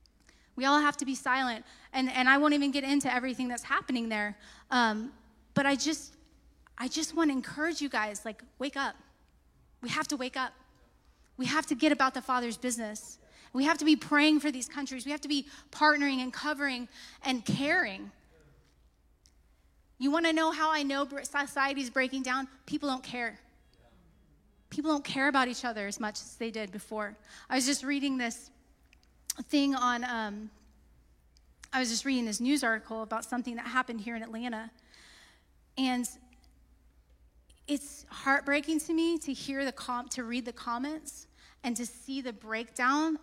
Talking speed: 175 wpm